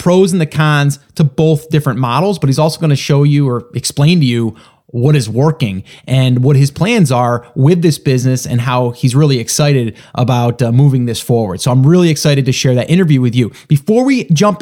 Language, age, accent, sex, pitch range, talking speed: English, 20-39, American, male, 125-165 Hz, 220 wpm